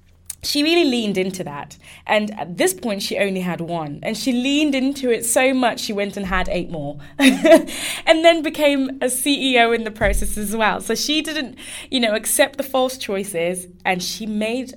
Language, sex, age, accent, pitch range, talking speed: English, female, 20-39, British, 180-265 Hz, 195 wpm